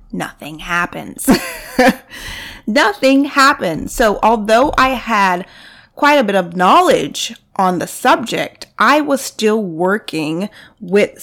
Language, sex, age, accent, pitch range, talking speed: English, female, 30-49, American, 175-235 Hz, 110 wpm